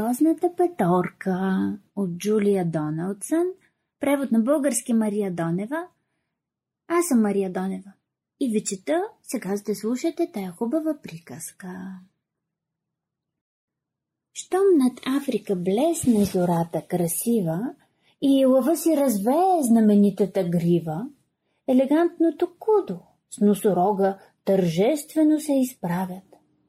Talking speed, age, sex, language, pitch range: 95 wpm, 30-49, female, Bulgarian, 195-295 Hz